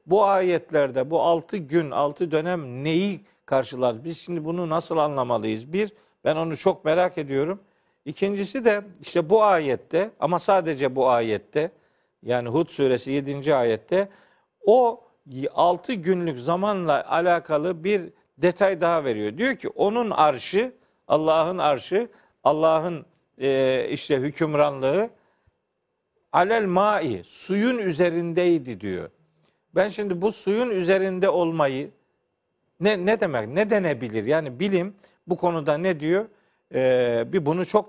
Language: Turkish